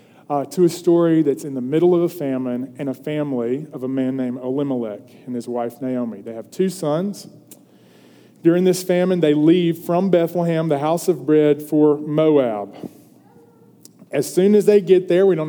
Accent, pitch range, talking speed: American, 145-180 Hz, 185 wpm